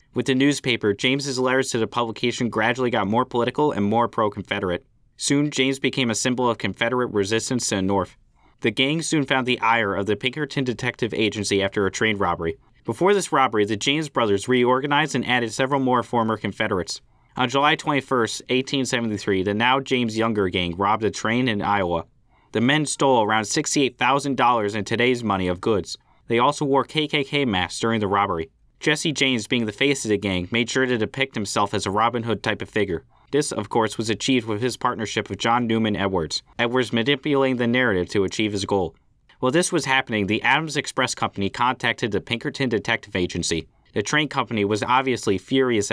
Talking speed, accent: 190 wpm, American